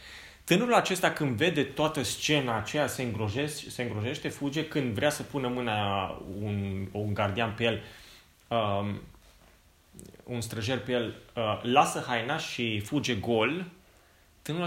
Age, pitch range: 20-39, 105-155 Hz